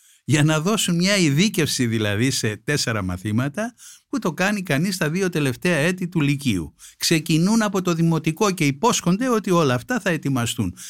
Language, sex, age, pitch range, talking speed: Greek, male, 60-79, 125-170 Hz, 165 wpm